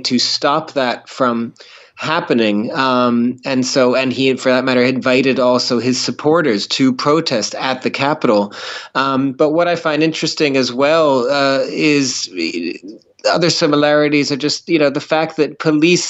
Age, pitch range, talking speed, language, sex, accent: 30-49, 125-150 Hz, 155 wpm, English, male, American